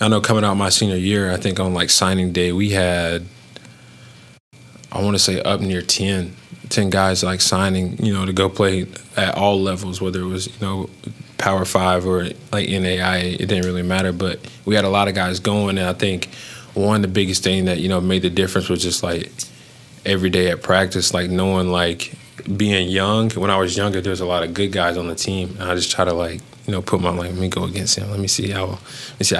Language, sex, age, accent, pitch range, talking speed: English, male, 20-39, American, 90-100 Hz, 240 wpm